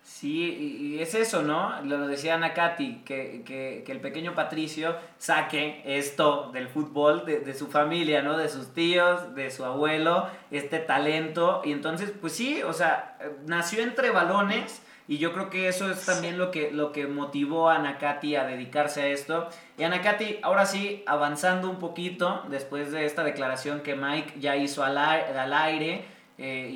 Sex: male